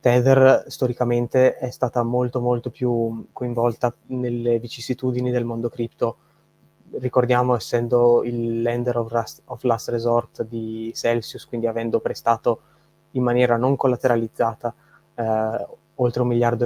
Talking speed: 120 wpm